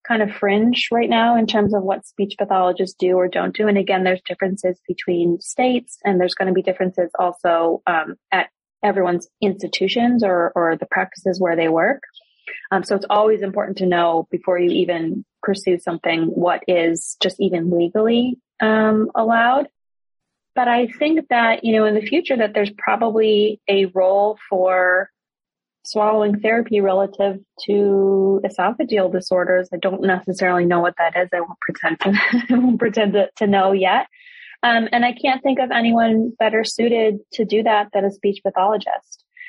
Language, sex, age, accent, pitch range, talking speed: English, female, 20-39, American, 185-225 Hz, 170 wpm